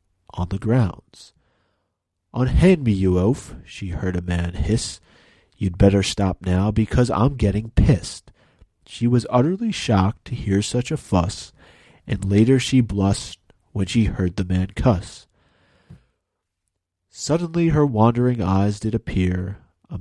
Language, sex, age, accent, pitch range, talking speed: English, male, 30-49, American, 95-125 Hz, 140 wpm